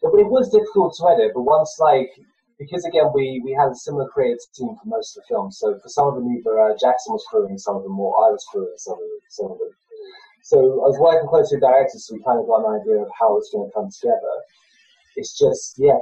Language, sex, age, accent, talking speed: English, male, 20-39, British, 255 wpm